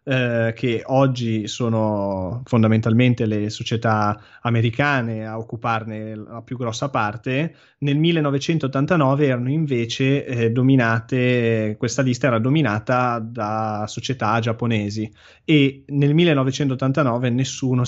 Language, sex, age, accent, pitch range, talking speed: Italian, male, 20-39, native, 115-135 Hz, 105 wpm